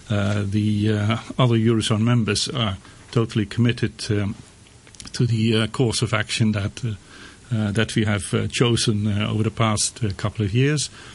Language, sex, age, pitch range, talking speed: English, male, 50-69, 105-120 Hz, 170 wpm